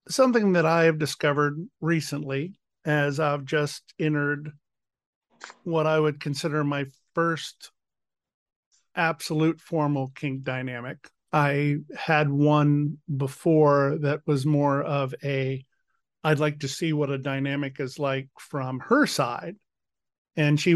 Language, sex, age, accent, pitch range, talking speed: English, male, 50-69, American, 140-160 Hz, 125 wpm